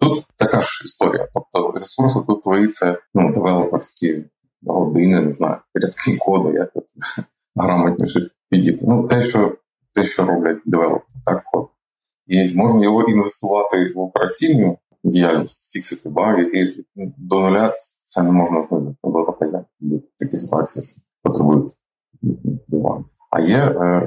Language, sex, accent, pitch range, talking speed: Ukrainian, male, native, 85-100 Hz, 135 wpm